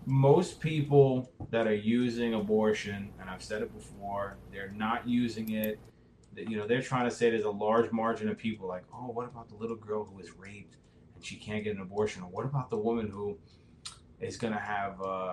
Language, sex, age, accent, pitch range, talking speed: English, male, 20-39, American, 100-120 Hz, 210 wpm